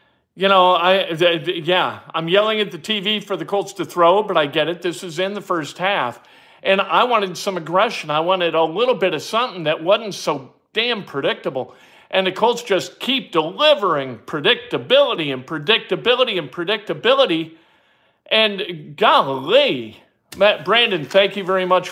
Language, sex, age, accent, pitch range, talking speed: English, male, 50-69, American, 170-235 Hz, 165 wpm